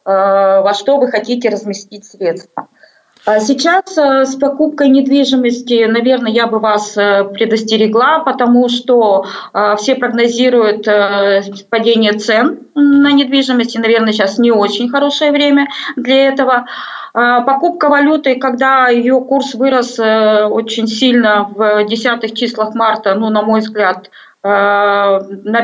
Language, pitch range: Russian, 220-270 Hz